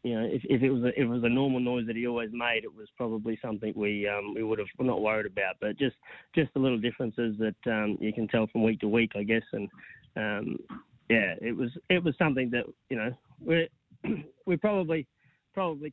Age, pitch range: 30-49, 110-140 Hz